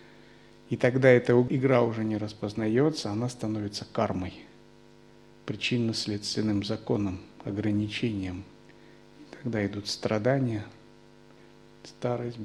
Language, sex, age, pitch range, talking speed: Russian, male, 50-69, 85-120 Hz, 80 wpm